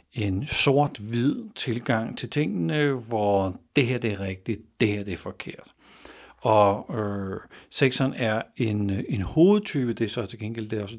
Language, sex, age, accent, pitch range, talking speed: Danish, male, 60-79, native, 110-135 Hz, 170 wpm